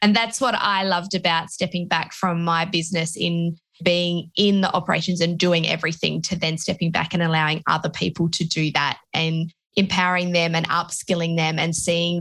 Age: 20-39